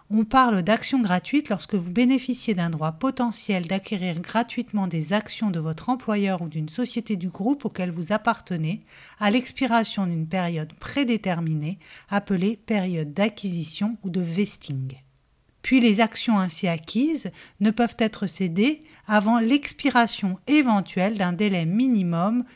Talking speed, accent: 135 wpm, French